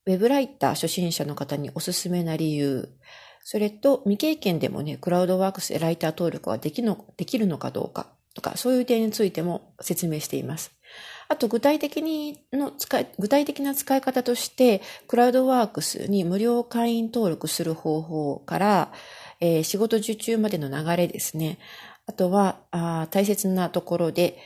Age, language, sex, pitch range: 40-59, Japanese, female, 160-230 Hz